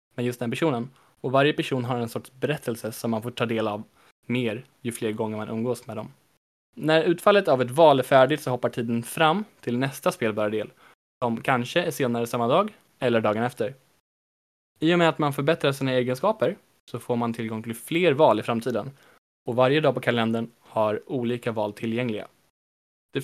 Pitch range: 115-140 Hz